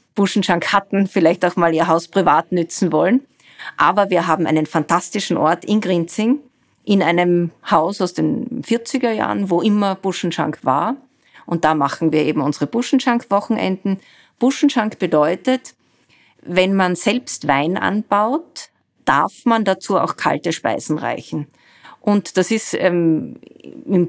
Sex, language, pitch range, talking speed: female, German, 160-200 Hz, 135 wpm